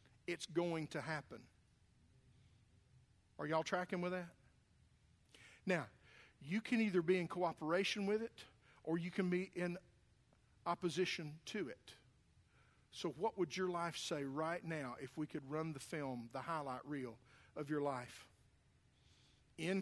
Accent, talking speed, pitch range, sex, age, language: American, 140 wpm, 125-170 Hz, male, 50-69, English